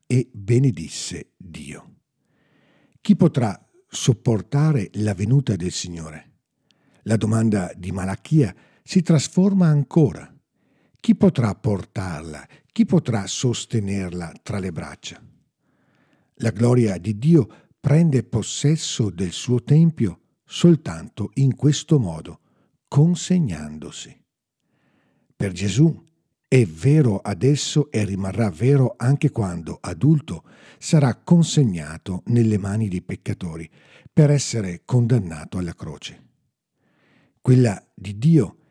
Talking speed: 100 wpm